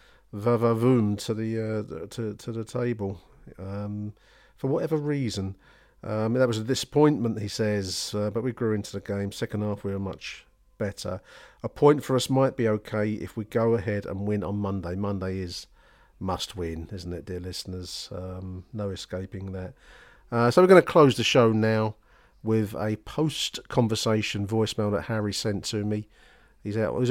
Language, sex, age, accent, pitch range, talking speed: English, male, 40-59, British, 100-115 Hz, 175 wpm